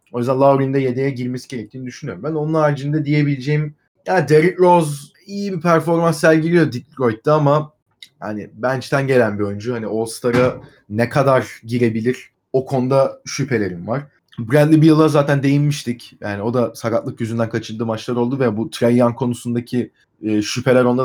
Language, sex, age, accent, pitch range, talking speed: Turkish, male, 30-49, native, 120-150 Hz, 150 wpm